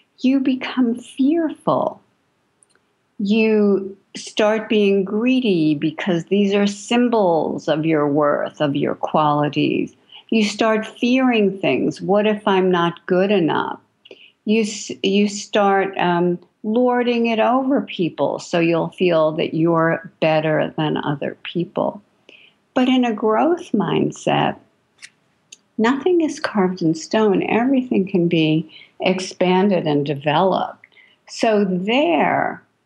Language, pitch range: English, 175-230 Hz